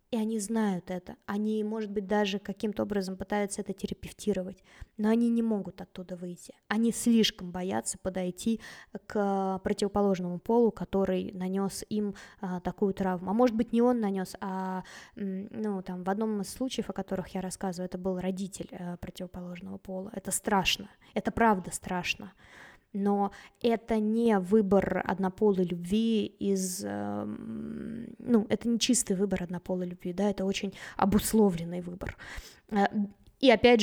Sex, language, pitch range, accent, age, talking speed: female, Russian, 190-220 Hz, native, 20-39, 135 wpm